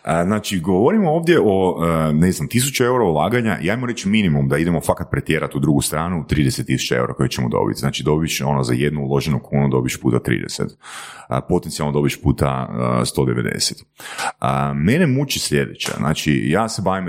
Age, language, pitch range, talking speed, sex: 30-49, Croatian, 75-115 Hz, 160 wpm, male